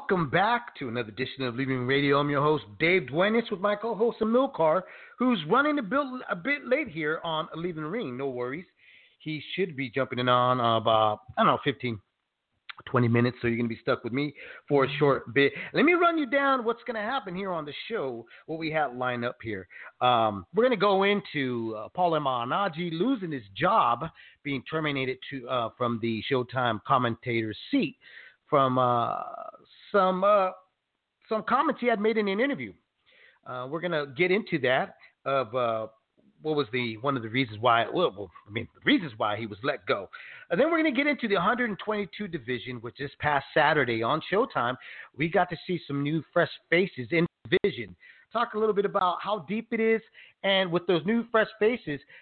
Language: English